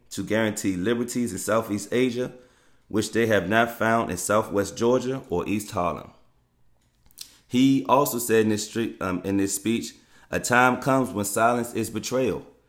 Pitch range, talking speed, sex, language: 100-125 Hz, 145 wpm, male, English